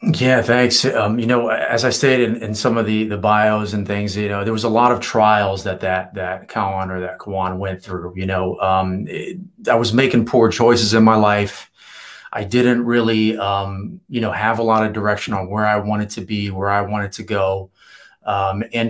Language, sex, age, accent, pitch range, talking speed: English, male, 30-49, American, 100-120 Hz, 220 wpm